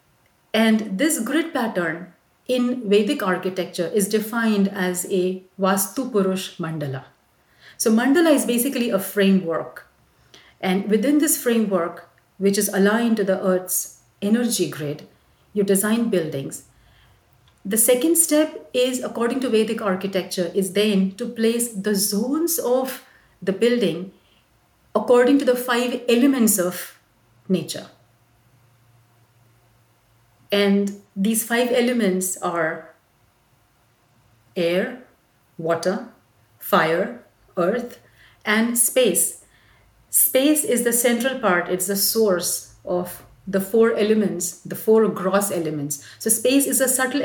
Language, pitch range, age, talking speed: English, 170-230 Hz, 50-69, 115 wpm